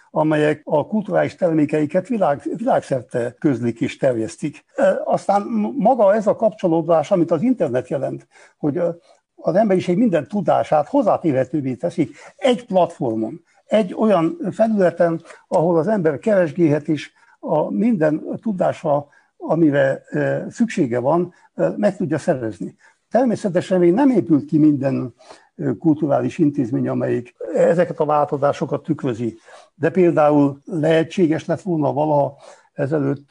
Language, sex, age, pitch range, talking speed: Hungarian, male, 60-79, 145-190 Hz, 115 wpm